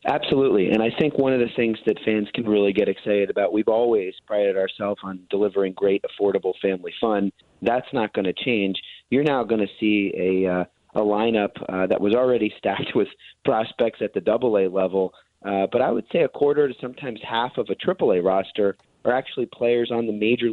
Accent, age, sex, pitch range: American, 30-49, male, 95-110 Hz